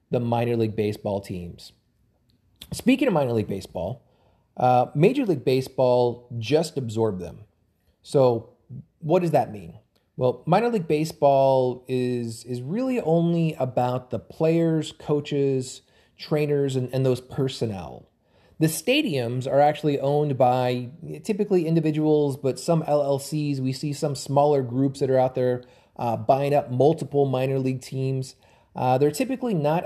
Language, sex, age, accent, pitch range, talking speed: English, male, 30-49, American, 120-150 Hz, 140 wpm